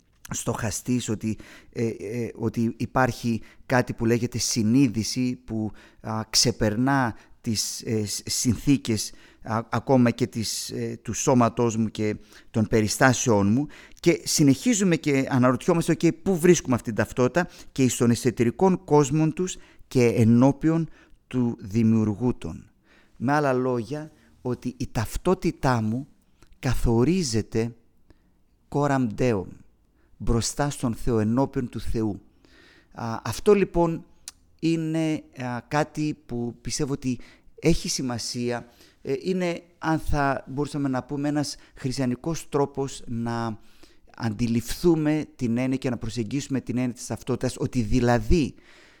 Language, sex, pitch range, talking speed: Greek, male, 115-145 Hz, 120 wpm